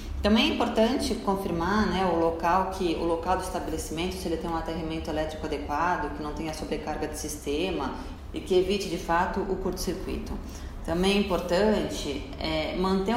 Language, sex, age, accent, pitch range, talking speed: Portuguese, female, 20-39, Brazilian, 145-170 Hz, 170 wpm